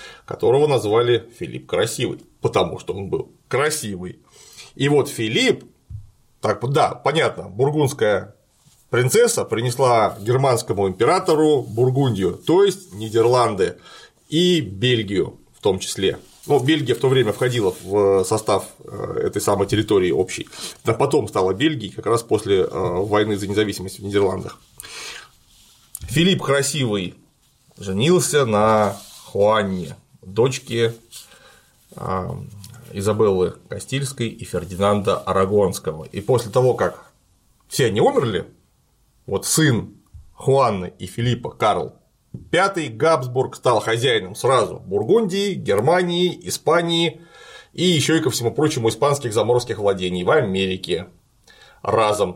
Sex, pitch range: male, 105-155 Hz